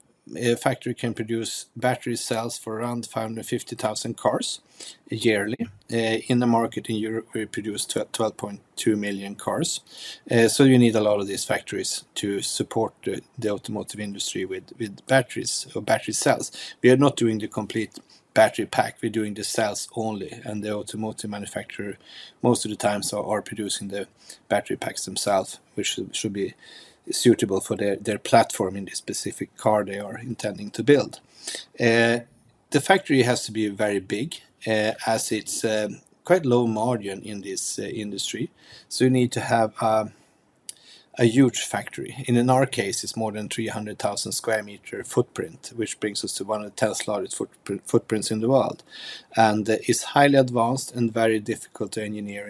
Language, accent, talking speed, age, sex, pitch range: English, Swedish, 175 wpm, 30-49, male, 105-120 Hz